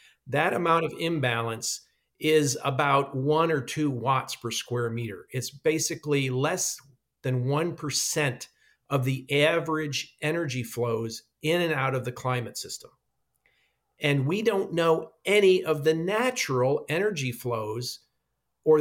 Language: English